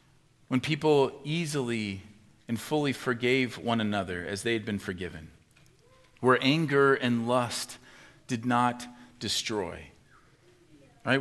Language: English